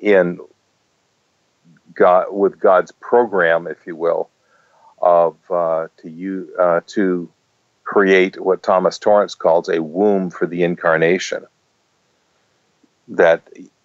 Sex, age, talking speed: male, 50-69, 110 wpm